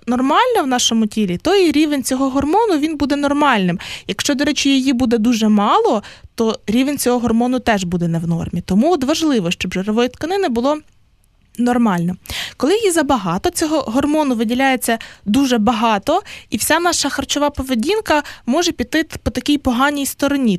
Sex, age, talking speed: female, 20-39, 155 wpm